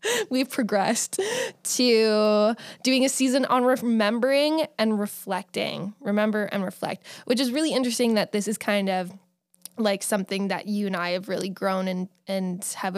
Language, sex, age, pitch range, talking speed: English, female, 10-29, 185-230 Hz, 155 wpm